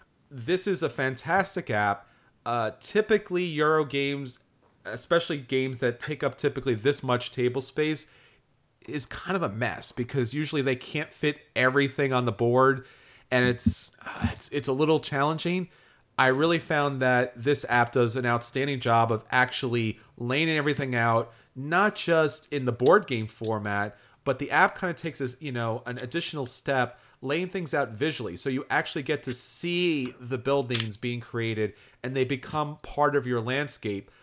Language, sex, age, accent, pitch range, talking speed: English, male, 30-49, American, 120-150 Hz, 170 wpm